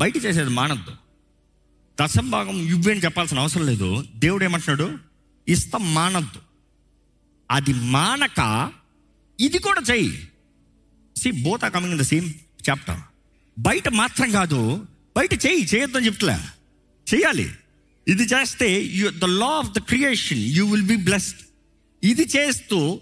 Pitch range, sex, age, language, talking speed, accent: 125-205 Hz, male, 50-69, Telugu, 115 wpm, native